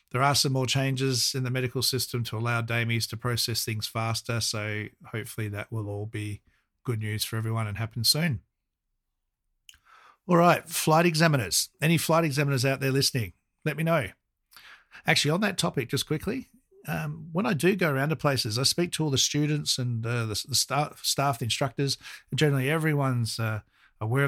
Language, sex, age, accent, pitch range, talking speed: English, male, 50-69, Australian, 115-150 Hz, 185 wpm